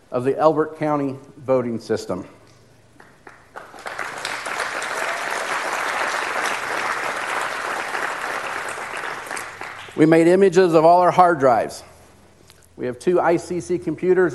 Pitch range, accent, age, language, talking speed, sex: 130-160 Hz, American, 50-69, English, 80 wpm, male